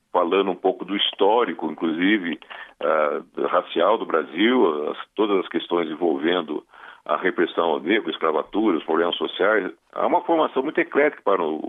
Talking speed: 165 wpm